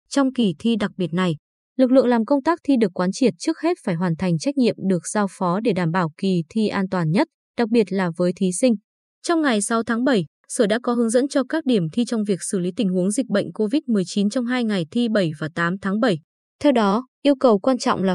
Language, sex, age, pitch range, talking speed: Vietnamese, female, 20-39, 190-255 Hz, 260 wpm